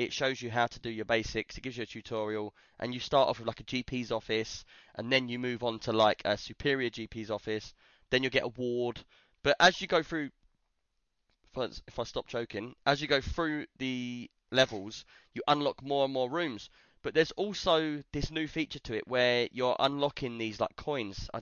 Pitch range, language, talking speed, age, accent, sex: 110-135 Hz, English, 205 wpm, 20-39, British, male